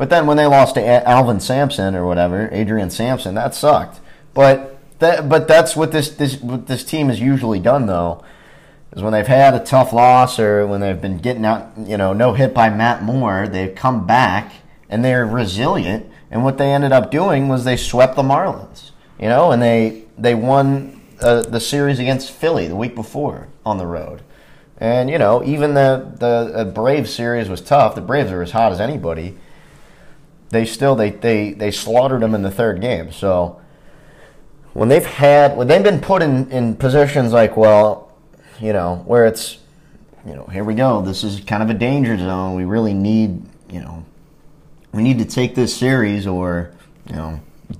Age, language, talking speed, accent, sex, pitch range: 30-49, English, 195 wpm, American, male, 100-135 Hz